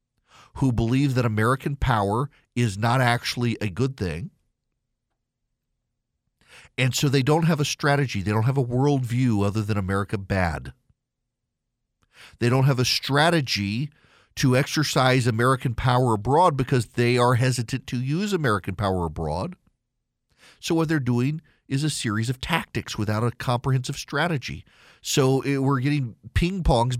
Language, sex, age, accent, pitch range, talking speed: English, male, 50-69, American, 120-145 Hz, 140 wpm